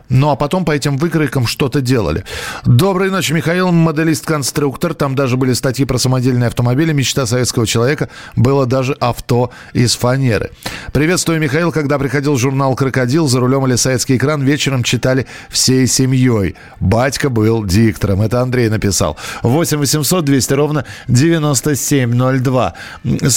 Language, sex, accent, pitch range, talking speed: Russian, male, native, 125-155 Hz, 135 wpm